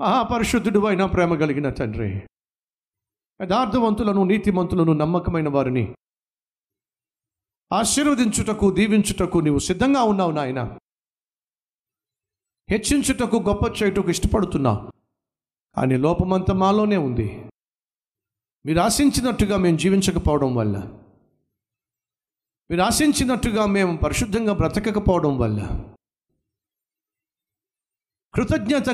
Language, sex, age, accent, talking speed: Telugu, male, 50-69, native, 75 wpm